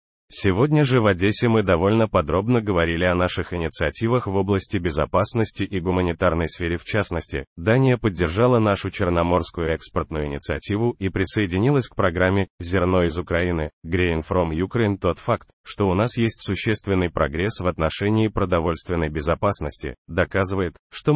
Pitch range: 85-110 Hz